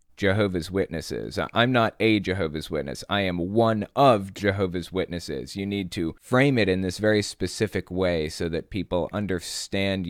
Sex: male